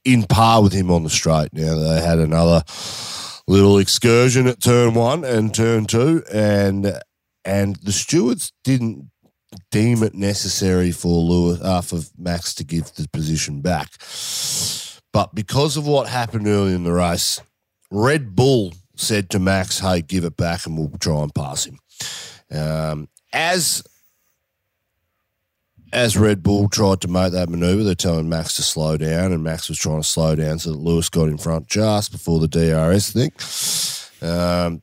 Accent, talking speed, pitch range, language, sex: Australian, 165 wpm, 80-105 Hz, English, male